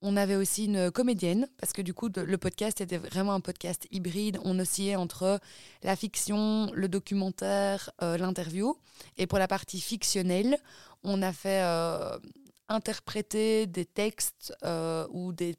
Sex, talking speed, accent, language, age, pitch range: female, 155 wpm, French, French, 20-39, 175-200 Hz